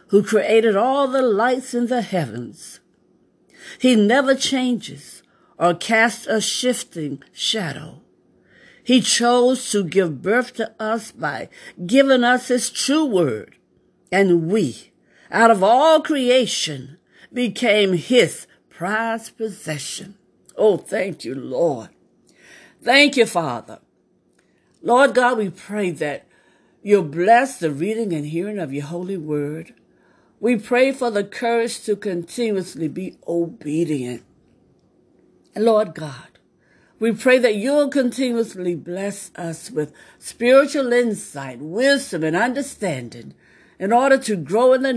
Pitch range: 170-245 Hz